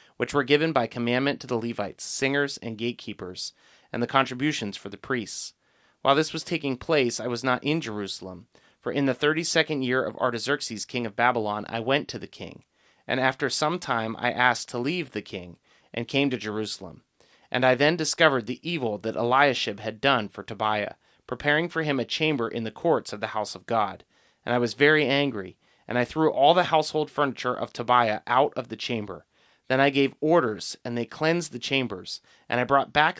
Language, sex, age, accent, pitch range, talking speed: English, male, 30-49, American, 110-145 Hz, 200 wpm